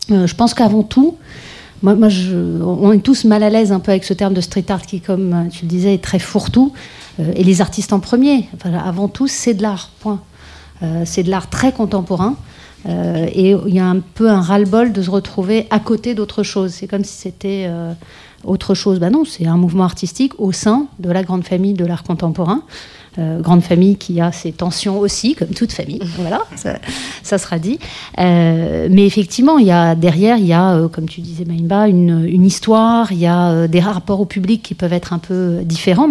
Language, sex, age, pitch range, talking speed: French, female, 40-59, 175-210 Hz, 225 wpm